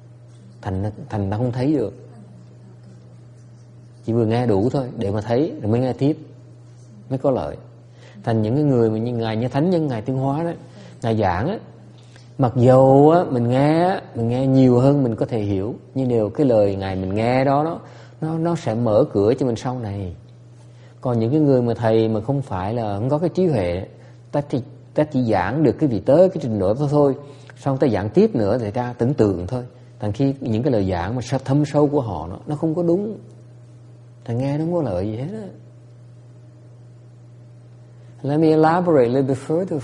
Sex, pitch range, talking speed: male, 120-140 Hz, 200 wpm